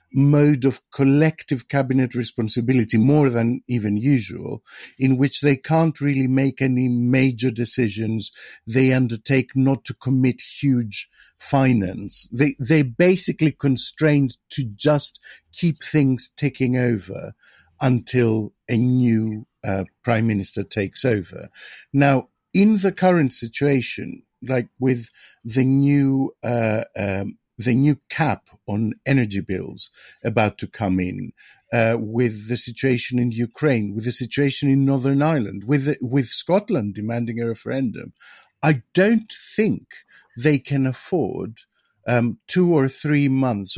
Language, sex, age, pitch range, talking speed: English, male, 50-69, 115-140 Hz, 125 wpm